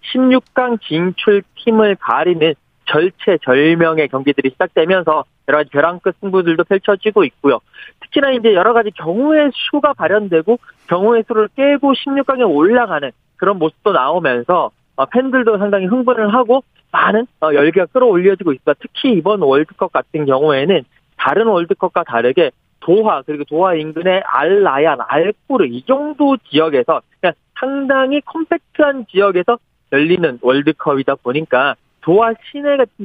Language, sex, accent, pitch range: Korean, male, native, 160-255 Hz